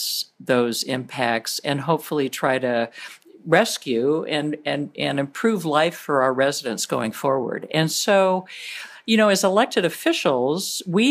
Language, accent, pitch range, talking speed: English, American, 140-180 Hz, 130 wpm